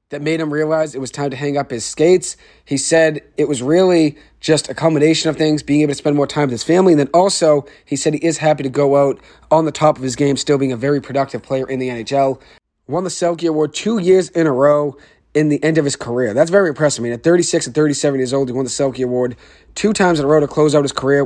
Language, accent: English, American